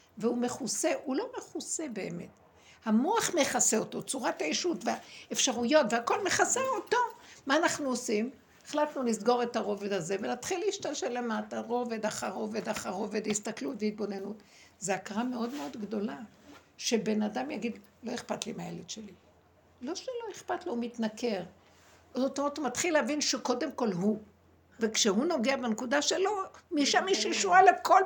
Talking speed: 140 wpm